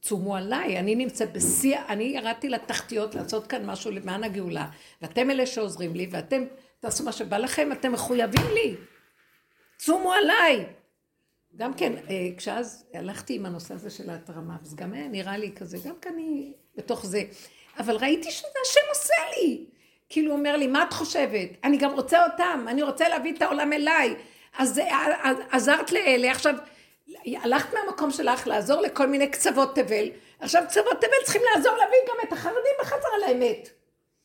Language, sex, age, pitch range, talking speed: Hebrew, female, 50-69, 240-350 Hz, 170 wpm